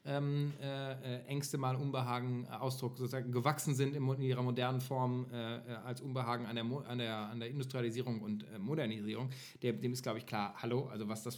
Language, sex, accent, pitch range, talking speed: German, male, German, 120-155 Hz, 195 wpm